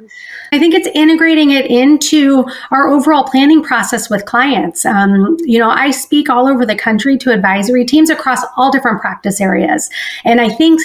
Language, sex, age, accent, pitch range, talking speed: English, female, 40-59, American, 205-265 Hz, 175 wpm